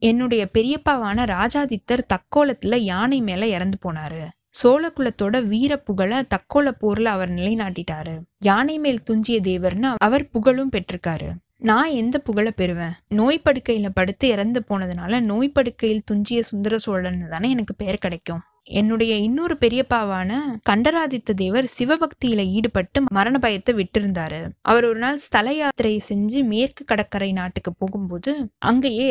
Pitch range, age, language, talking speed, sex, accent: 190-255 Hz, 20-39, Tamil, 110 wpm, female, native